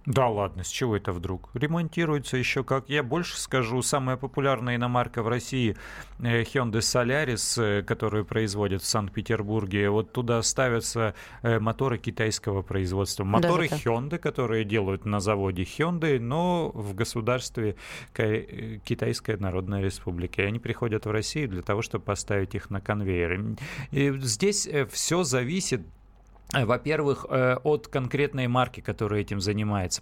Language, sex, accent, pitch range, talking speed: Russian, male, native, 110-135 Hz, 130 wpm